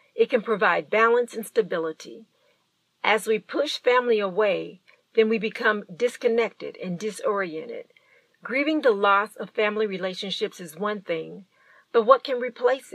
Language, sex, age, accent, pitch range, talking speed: English, female, 50-69, American, 200-260 Hz, 140 wpm